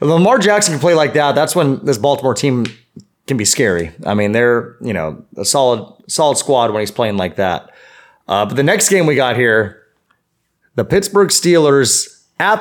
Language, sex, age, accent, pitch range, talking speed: English, male, 30-49, American, 125-155 Hz, 195 wpm